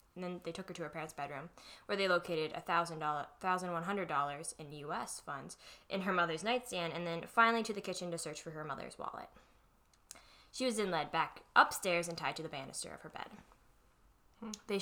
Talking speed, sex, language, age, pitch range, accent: 200 wpm, female, English, 10-29, 170-225 Hz, American